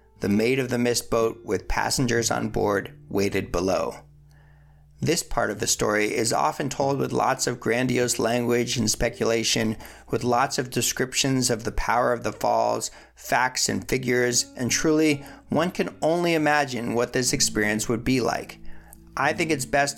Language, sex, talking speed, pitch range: English, male, 170 wpm, 110-135 Hz